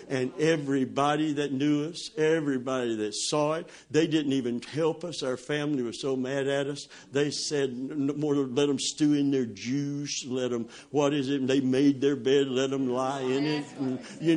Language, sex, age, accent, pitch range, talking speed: English, male, 60-79, American, 140-180 Hz, 195 wpm